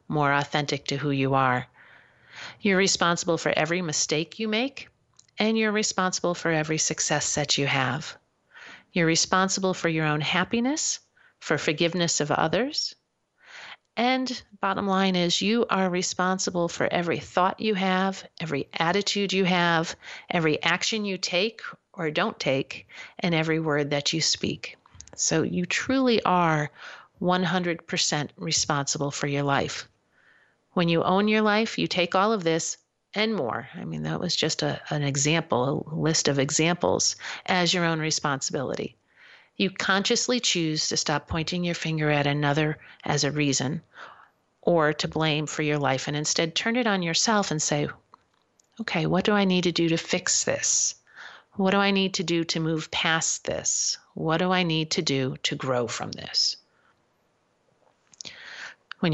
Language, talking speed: English, 155 wpm